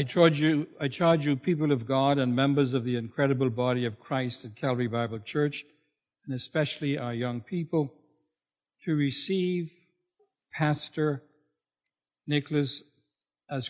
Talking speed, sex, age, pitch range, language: 135 wpm, male, 60-79, 120-150 Hz, English